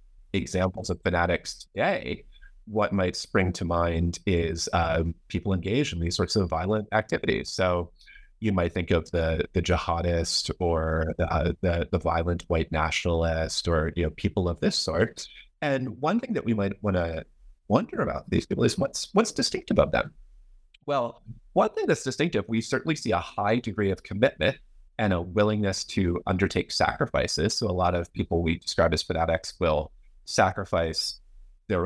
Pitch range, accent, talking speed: 85-105 Hz, American, 170 wpm